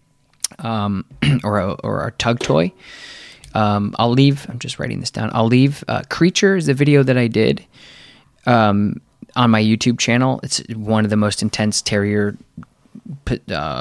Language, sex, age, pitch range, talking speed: English, male, 20-39, 105-130 Hz, 170 wpm